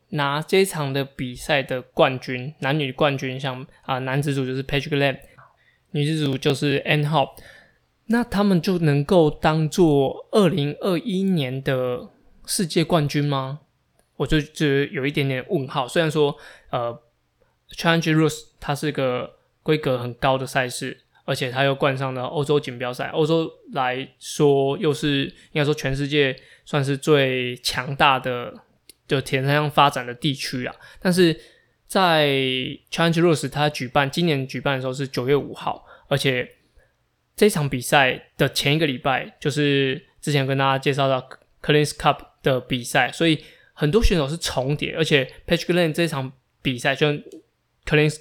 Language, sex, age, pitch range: Chinese, male, 20-39, 135-155 Hz